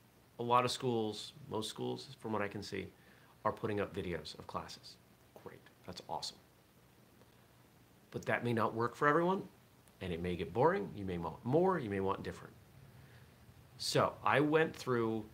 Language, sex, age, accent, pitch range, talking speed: English, male, 40-59, American, 100-140 Hz, 170 wpm